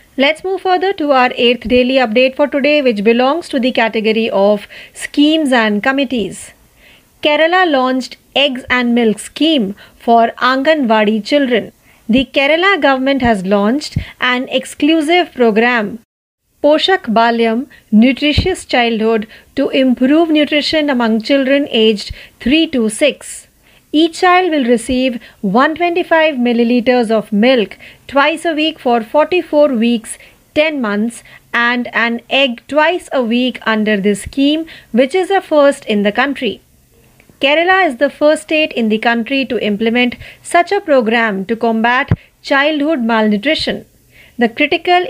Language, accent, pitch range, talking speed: Marathi, native, 230-295 Hz, 135 wpm